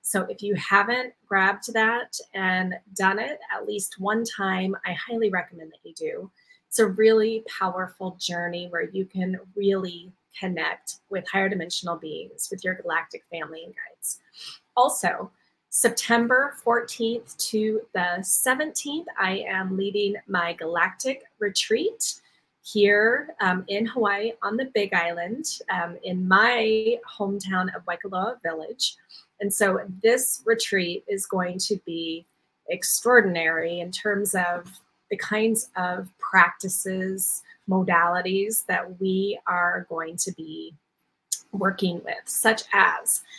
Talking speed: 130 wpm